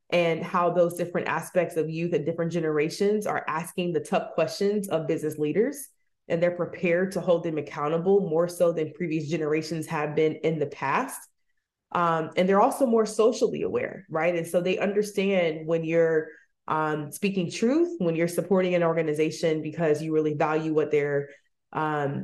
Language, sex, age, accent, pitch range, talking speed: English, female, 20-39, American, 155-190 Hz, 175 wpm